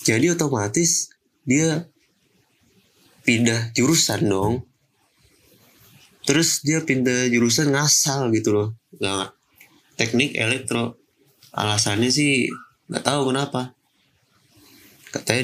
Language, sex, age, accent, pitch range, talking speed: Indonesian, male, 20-39, native, 115-140 Hz, 85 wpm